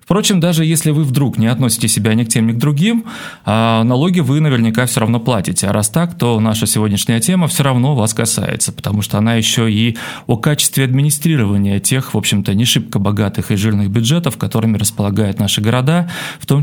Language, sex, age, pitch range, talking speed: Russian, male, 30-49, 110-150 Hz, 195 wpm